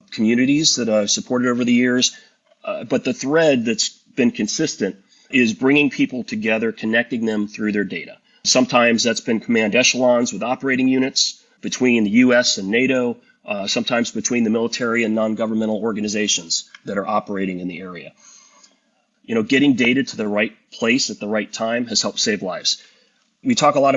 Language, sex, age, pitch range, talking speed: English, male, 30-49, 110-140 Hz, 175 wpm